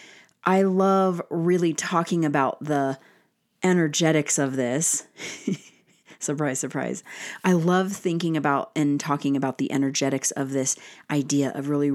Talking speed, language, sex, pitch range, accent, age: 125 wpm, English, female, 140-170 Hz, American, 30-49